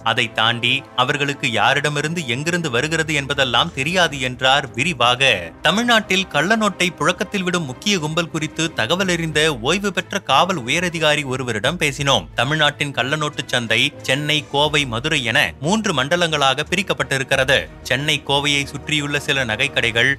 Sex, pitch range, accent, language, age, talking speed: male, 135-165 Hz, native, Tamil, 30-49, 120 wpm